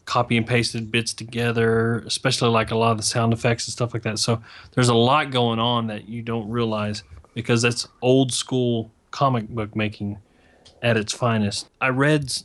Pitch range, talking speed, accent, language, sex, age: 110-120 Hz, 190 wpm, American, English, male, 30-49